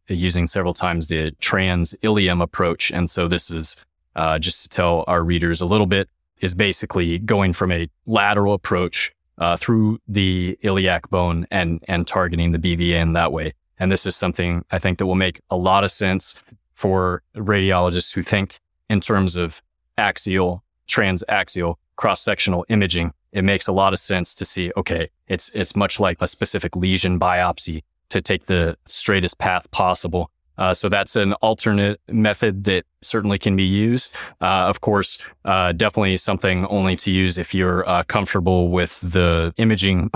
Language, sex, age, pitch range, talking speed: English, male, 20-39, 85-95 Hz, 170 wpm